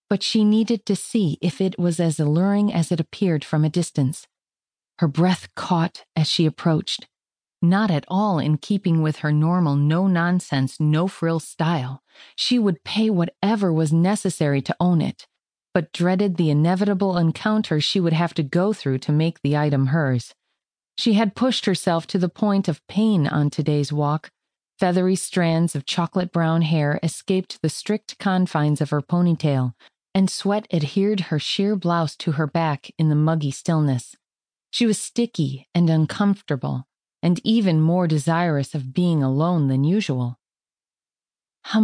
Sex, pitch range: female, 155-195 Hz